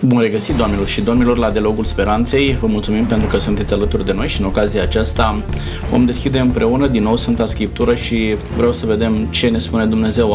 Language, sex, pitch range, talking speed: Romanian, male, 110-130 Hz, 205 wpm